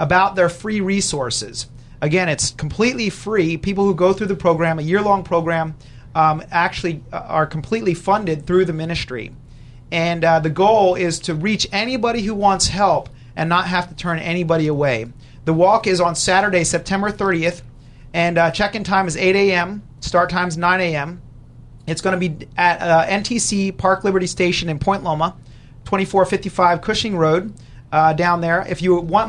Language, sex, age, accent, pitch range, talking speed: English, male, 30-49, American, 160-190 Hz, 170 wpm